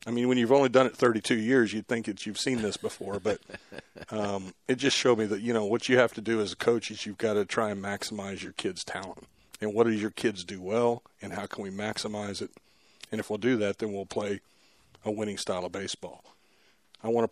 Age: 40-59